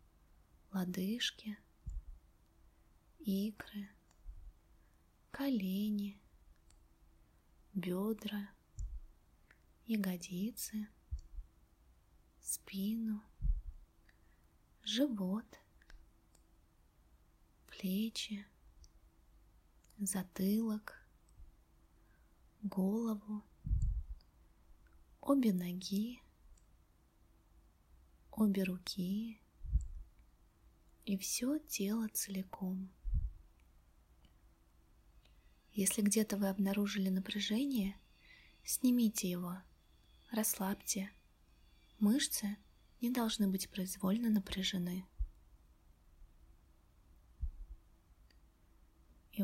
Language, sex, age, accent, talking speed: Russian, female, 20-39, native, 40 wpm